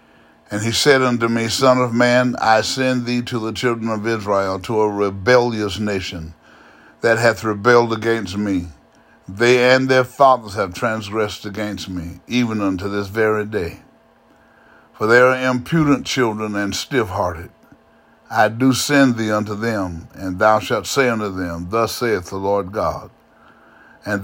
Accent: American